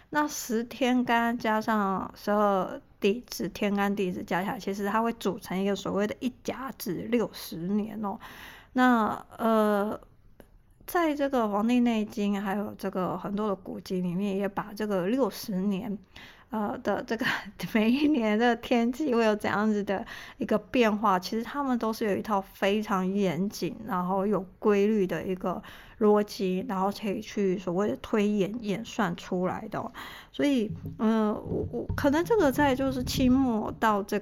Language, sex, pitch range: Chinese, female, 195-235 Hz